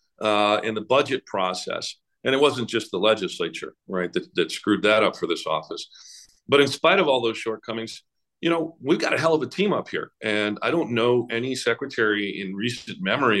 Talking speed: 210 wpm